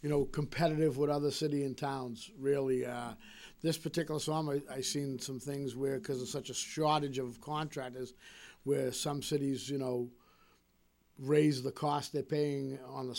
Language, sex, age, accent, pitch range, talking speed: English, male, 50-69, American, 130-150 Hz, 175 wpm